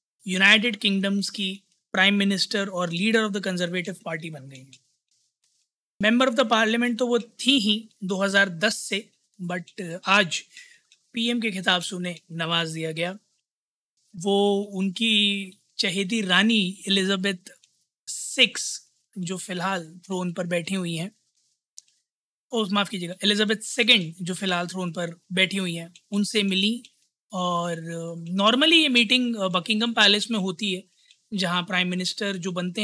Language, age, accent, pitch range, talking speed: Hindi, 20-39, native, 180-215 Hz, 135 wpm